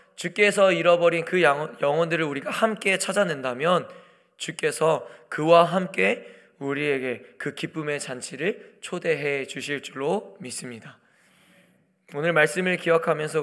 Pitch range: 150-180 Hz